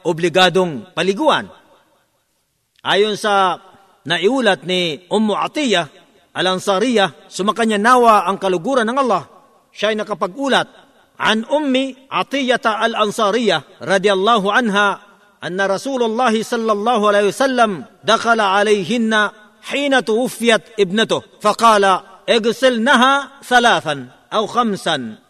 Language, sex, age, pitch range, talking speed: Filipino, male, 50-69, 190-235 Hz, 95 wpm